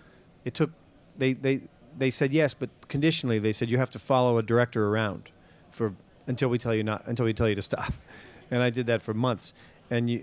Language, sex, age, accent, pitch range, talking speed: English, male, 40-59, American, 115-145 Hz, 225 wpm